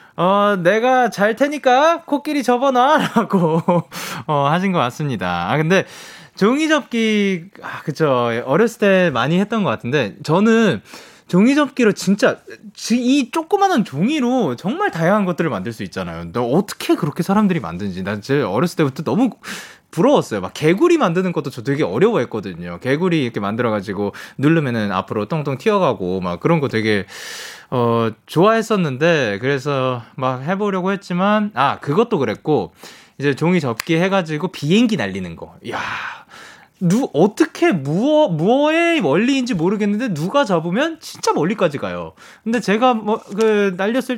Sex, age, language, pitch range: male, 20-39, Korean, 145-230 Hz